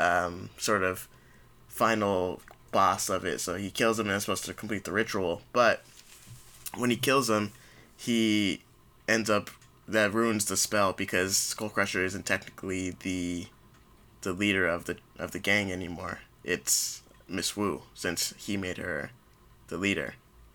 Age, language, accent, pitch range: 20-39, English, American, 95-115 Hz